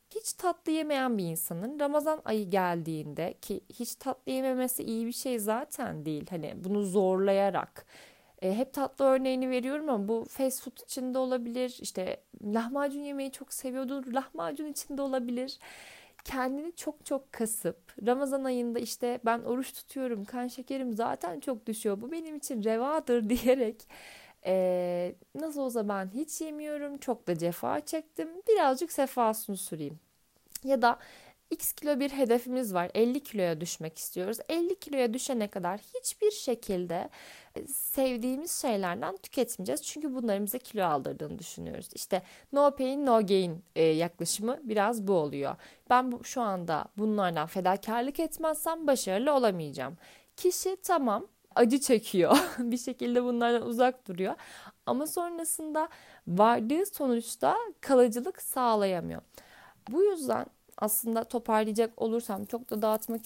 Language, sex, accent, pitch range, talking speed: Turkish, female, native, 205-275 Hz, 130 wpm